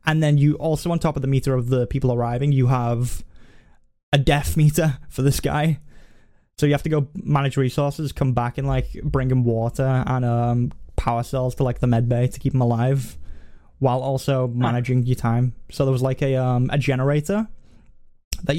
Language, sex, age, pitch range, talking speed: English, male, 10-29, 120-140 Hz, 195 wpm